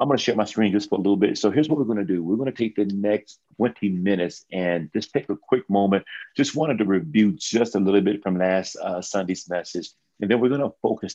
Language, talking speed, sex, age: English, 275 wpm, male, 40-59